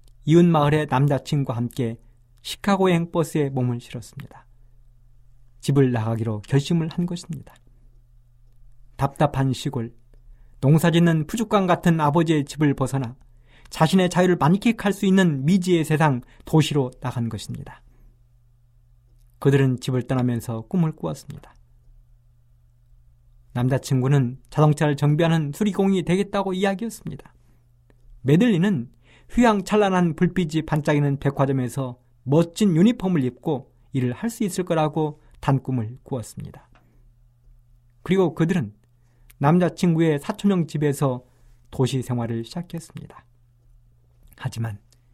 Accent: native